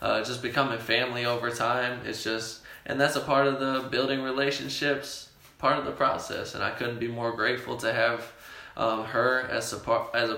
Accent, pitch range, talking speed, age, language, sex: American, 115-130 Hz, 200 wpm, 10-29, English, male